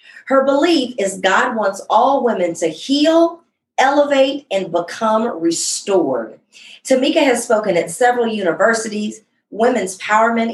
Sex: female